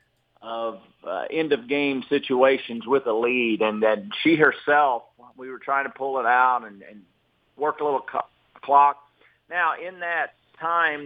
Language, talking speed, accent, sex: English, 155 wpm, American, male